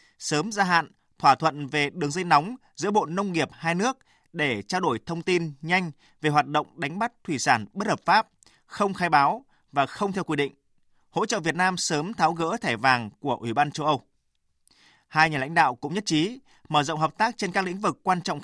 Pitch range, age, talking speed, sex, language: 145-190 Hz, 20-39, 230 wpm, male, Vietnamese